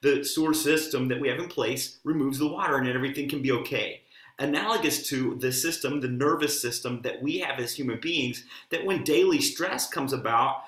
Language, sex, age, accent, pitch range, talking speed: English, male, 30-49, American, 130-160 Hz, 195 wpm